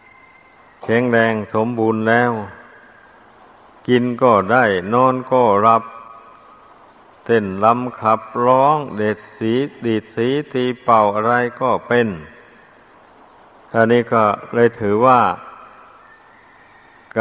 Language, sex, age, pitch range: Thai, male, 60-79, 110-120 Hz